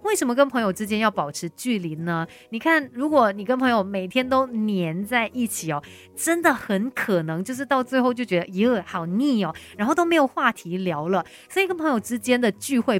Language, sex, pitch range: Chinese, female, 185-260 Hz